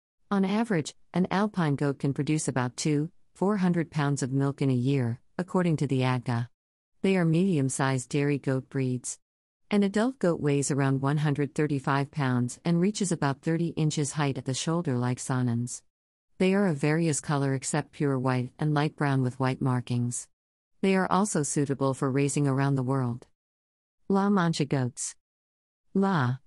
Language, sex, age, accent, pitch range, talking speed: English, female, 50-69, American, 130-160 Hz, 165 wpm